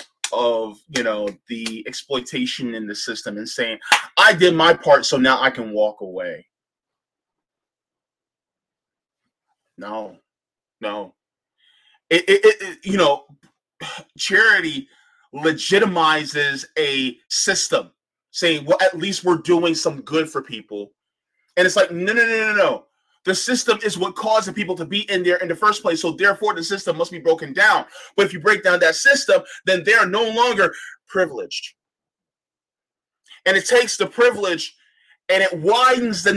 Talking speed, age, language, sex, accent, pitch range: 155 wpm, 30-49, English, male, American, 155-250 Hz